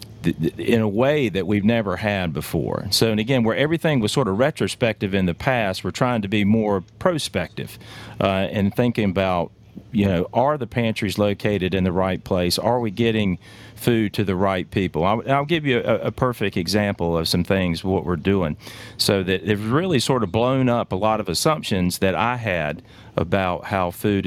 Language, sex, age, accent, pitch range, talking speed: English, male, 40-59, American, 95-120 Hz, 200 wpm